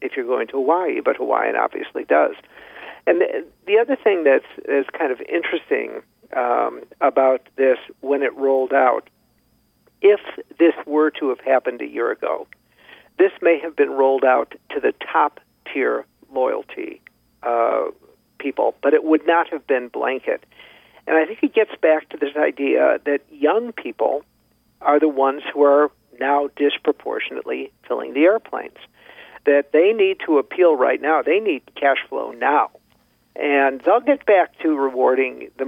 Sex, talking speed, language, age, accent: male, 160 wpm, English, 50-69, American